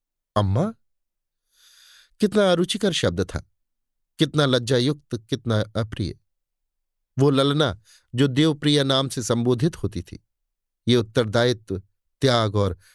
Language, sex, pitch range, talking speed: Hindi, male, 105-145 Hz, 100 wpm